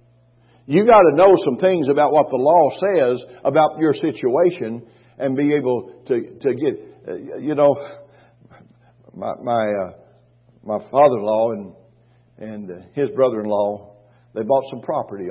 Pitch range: 120-145 Hz